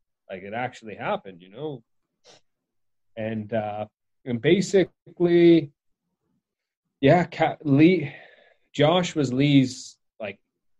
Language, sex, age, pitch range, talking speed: English, male, 20-39, 115-140 Hz, 95 wpm